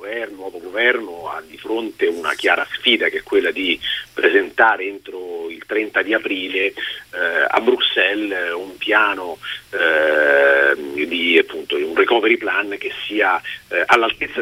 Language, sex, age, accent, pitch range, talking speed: Italian, male, 40-59, native, 365-430 Hz, 135 wpm